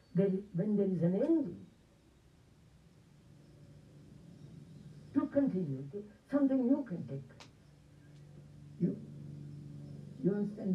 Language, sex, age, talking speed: English, female, 60-79, 85 wpm